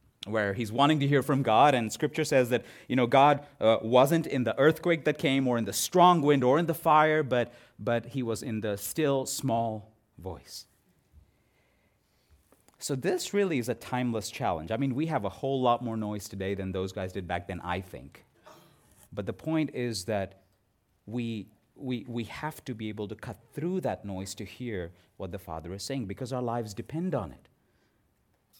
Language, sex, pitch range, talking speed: English, male, 100-135 Hz, 195 wpm